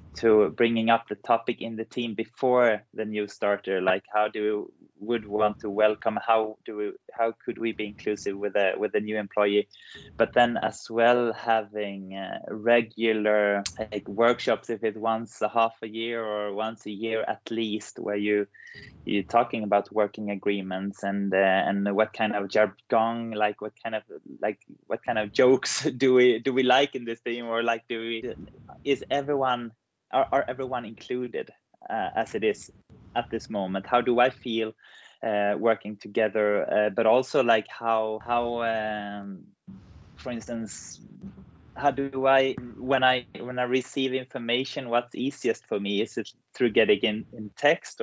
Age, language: 20-39, English